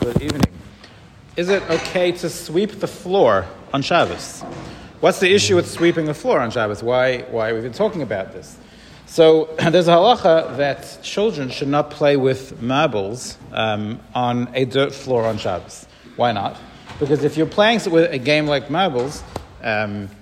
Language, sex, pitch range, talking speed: English, male, 125-165 Hz, 170 wpm